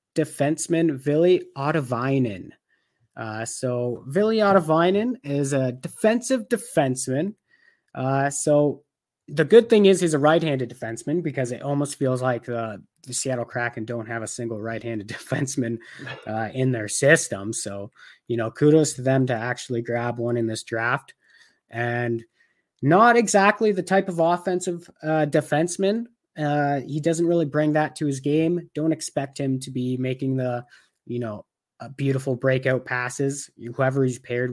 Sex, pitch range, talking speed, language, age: male, 120-160 Hz, 150 wpm, English, 30-49